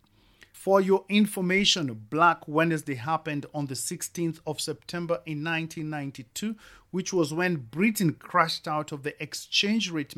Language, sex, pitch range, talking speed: English, male, 130-170 Hz, 135 wpm